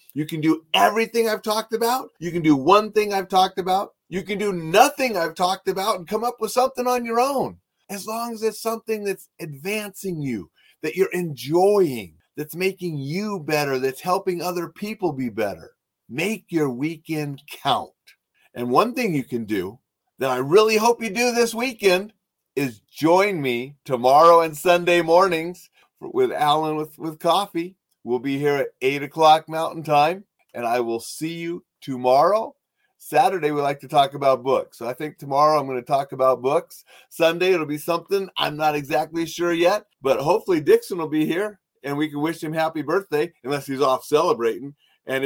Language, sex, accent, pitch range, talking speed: English, male, American, 140-195 Hz, 185 wpm